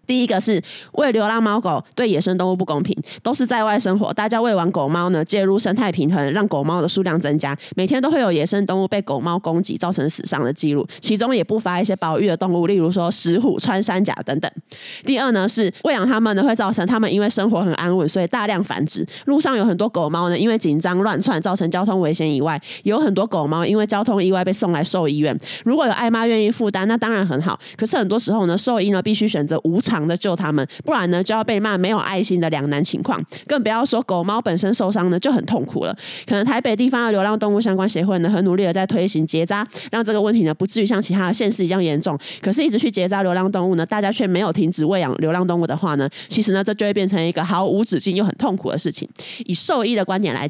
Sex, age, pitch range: female, 20-39, 175-215 Hz